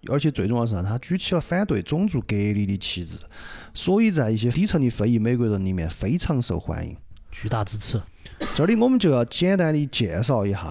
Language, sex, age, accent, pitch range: Chinese, male, 30-49, native, 95-130 Hz